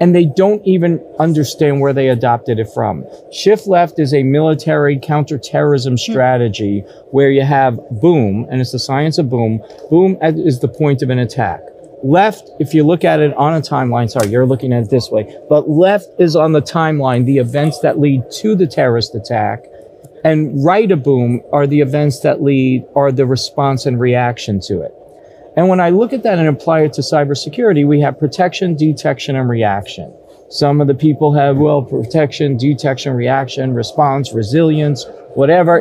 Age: 40-59